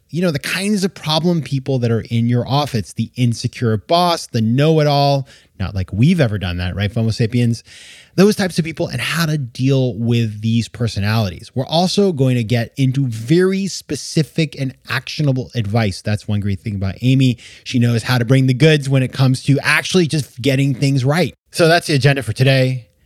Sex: male